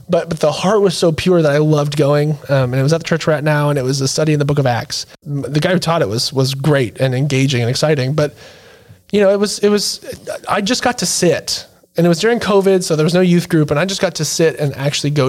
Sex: male